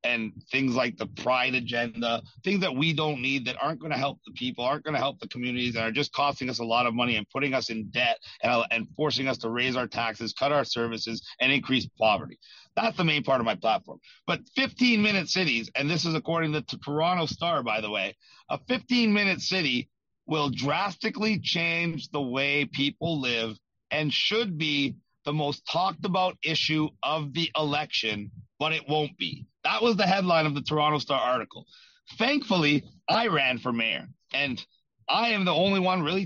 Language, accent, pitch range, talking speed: English, American, 130-175 Hz, 195 wpm